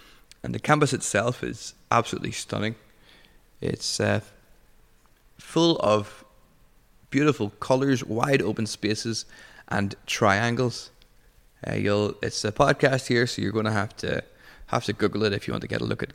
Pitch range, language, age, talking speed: 105-130 Hz, English, 20-39, 150 wpm